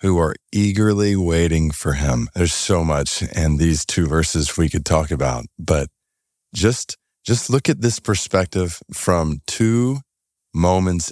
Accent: American